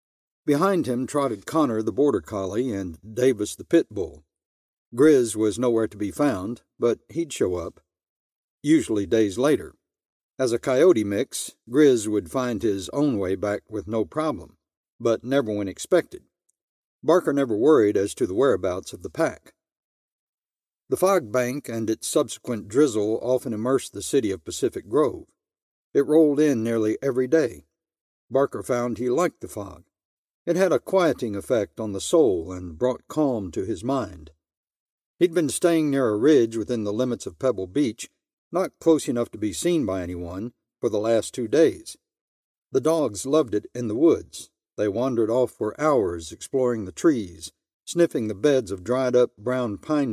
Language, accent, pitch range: English, American, 105-145 Hz